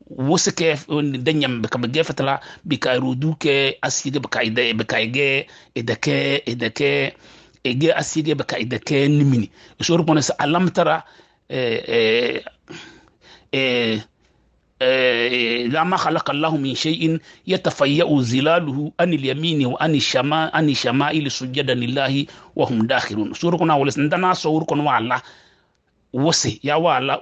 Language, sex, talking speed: English, male, 45 wpm